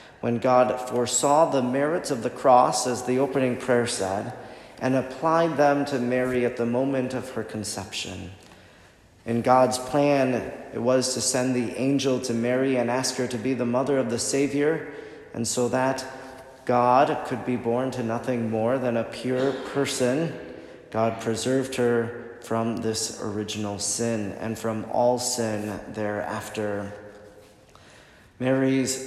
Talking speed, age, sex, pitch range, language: 150 wpm, 40-59, male, 115-130 Hz, English